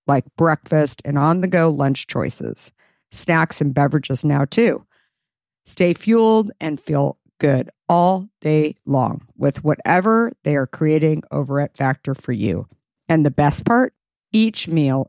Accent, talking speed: American, 140 wpm